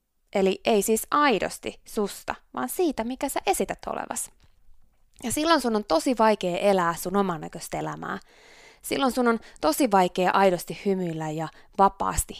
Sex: female